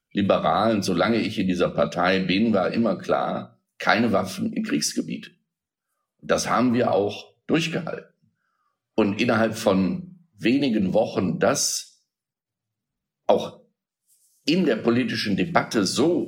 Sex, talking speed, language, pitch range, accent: male, 115 wpm, German, 85-115 Hz, German